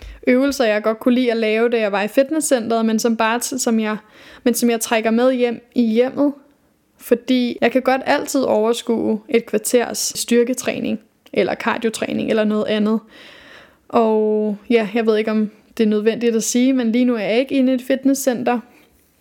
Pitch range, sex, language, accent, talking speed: 225-250 Hz, female, Danish, native, 185 wpm